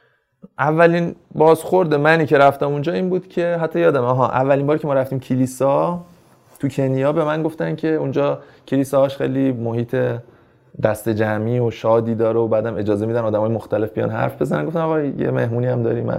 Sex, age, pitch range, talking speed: male, 20-39, 110-140 Hz, 185 wpm